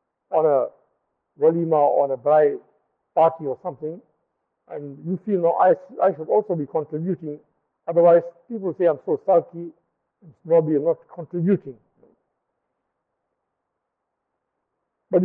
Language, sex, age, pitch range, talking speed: English, male, 60-79, 160-210 Hz, 120 wpm